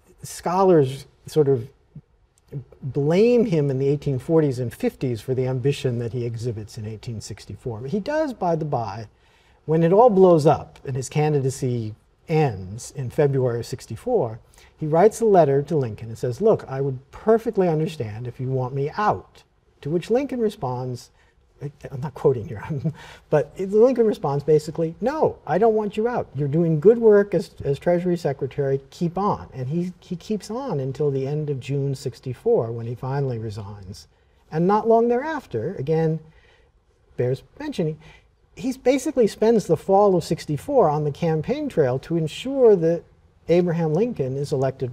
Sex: male